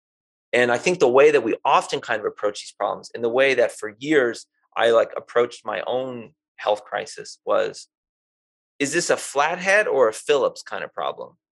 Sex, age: male, 30-49